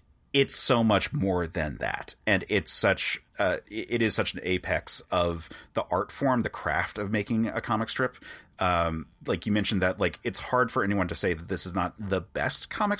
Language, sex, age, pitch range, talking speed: English, male, 30-49, 90-110 Hz, 210 wpm